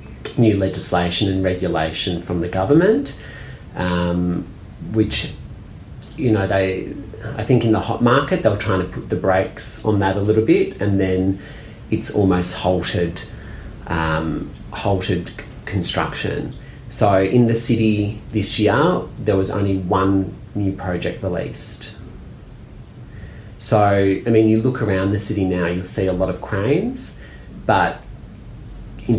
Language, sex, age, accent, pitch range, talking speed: English, male, 30-49, Australian, 90-110 Hz, 140 wpm